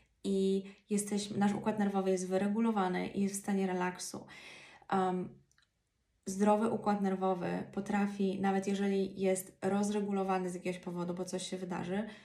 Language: Polish